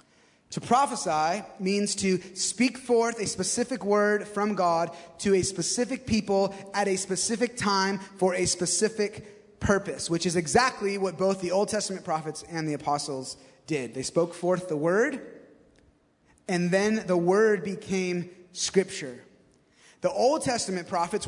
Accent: American